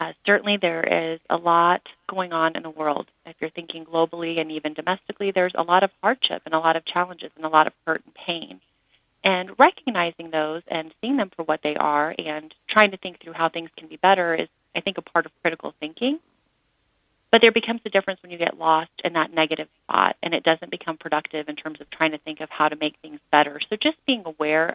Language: English